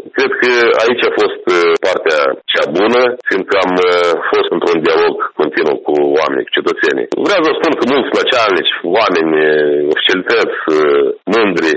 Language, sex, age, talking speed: Romanian, male, 40-59, 140 wpm